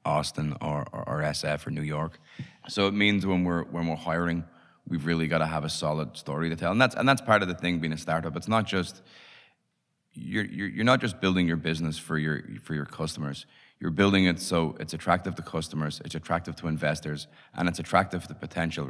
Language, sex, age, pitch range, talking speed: English, male, 20-39, 75-85 Hz, 220 wpm